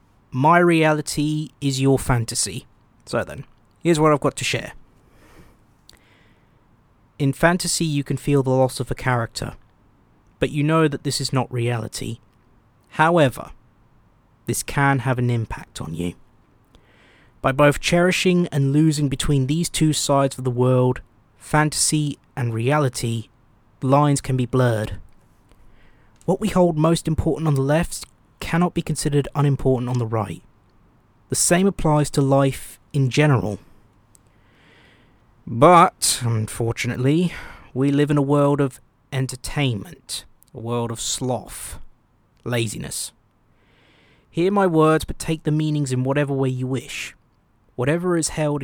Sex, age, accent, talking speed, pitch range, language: male, 20-39, British, 135 wpm, 115-145 Hz, English